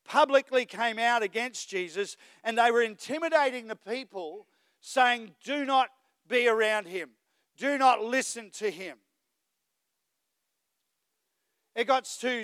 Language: English